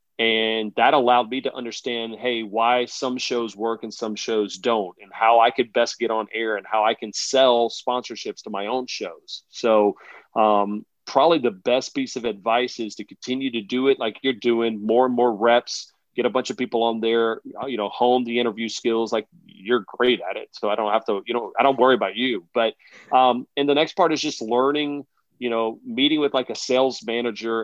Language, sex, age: English, male, 30-49